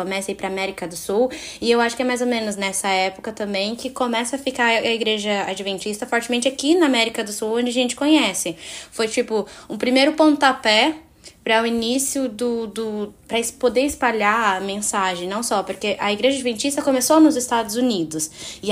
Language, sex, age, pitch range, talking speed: Portuguese, female, 10-29, 200-265 Hz, 195 wpm